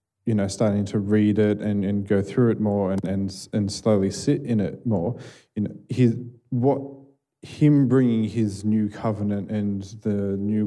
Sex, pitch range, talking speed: male, 95-110 Hz, 180 wpm